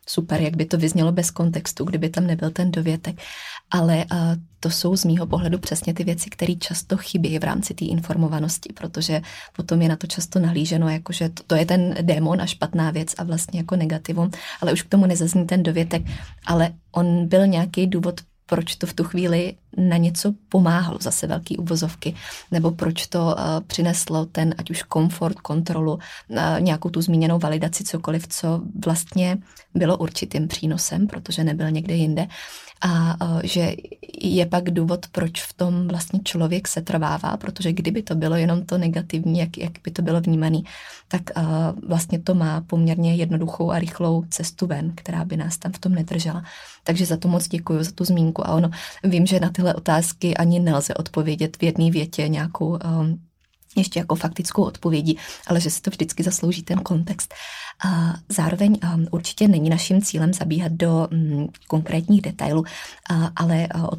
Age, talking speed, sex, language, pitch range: 20-39, 175 wpm, female, Czech, 165-180 Hz